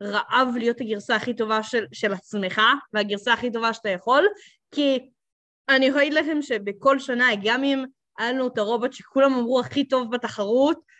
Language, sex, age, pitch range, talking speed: Hebrew, female, 20-39, 230-295 Hz, 165 wpm